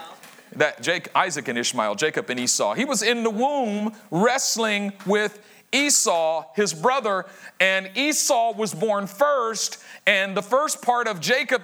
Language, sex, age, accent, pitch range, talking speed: English, male, 40-59, American, 170-250 Hz, 145 wpm